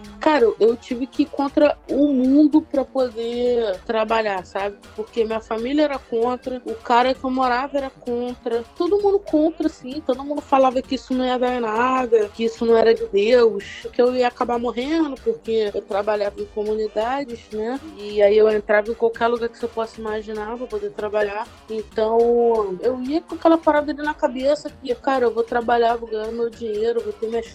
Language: Portuguese